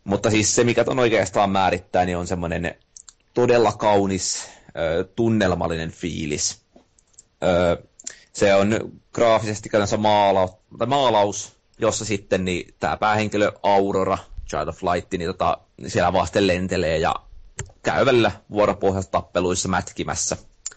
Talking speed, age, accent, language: 110 wpm, 30-49, native, Finnish